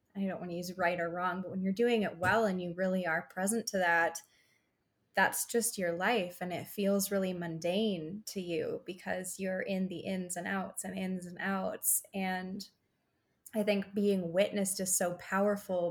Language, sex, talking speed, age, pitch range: English, female, 190 wpm, 20-39, 185-215 Hz